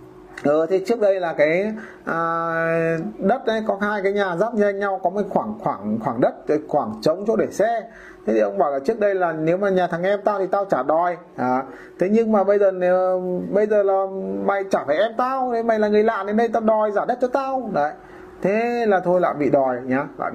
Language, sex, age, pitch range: Vietnamese, male, 20-39, 165-220 Hz